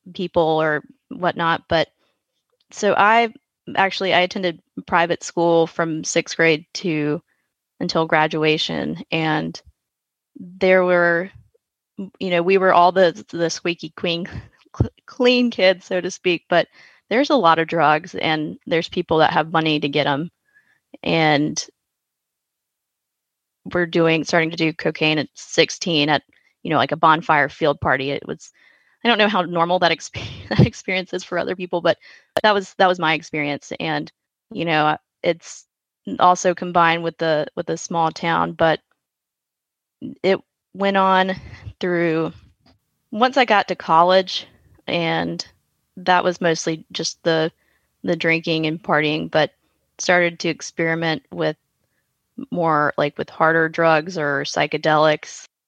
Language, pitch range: English, 155-185 Hz